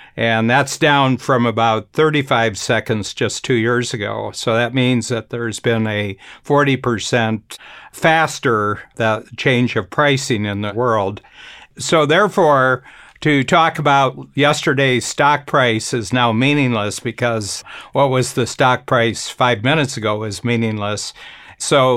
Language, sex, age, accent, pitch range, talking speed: English, male, 60-79, American, 110-135 Hz, 135 wpm